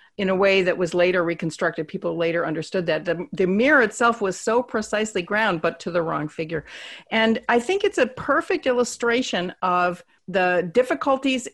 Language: English